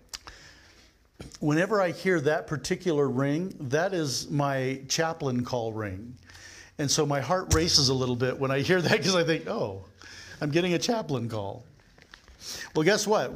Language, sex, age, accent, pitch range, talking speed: English, male, 50-69, American, 145-185 Hz, 160 wpm